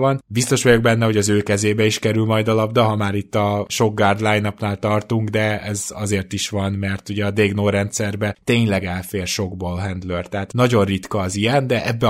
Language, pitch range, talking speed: Hungarian, 95-115 Hz, 205 wpm